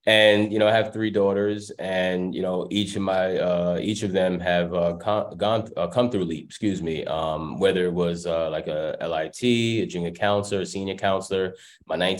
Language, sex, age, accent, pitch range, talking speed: English, male, 20-39, American, 85-95 Hz, 210 wpm